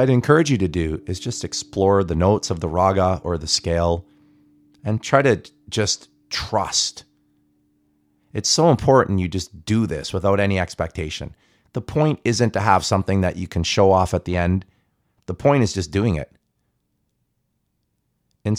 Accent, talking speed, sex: American, 170 wpm, male